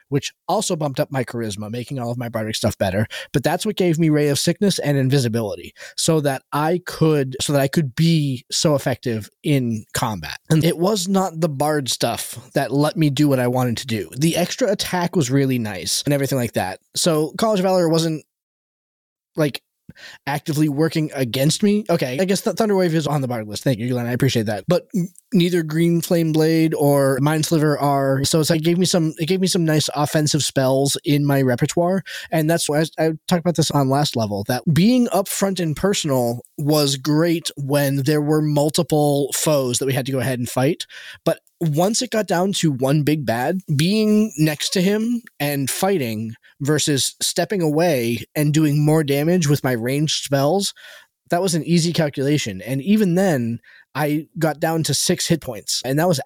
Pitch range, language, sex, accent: 135-170 Hz, English, male, American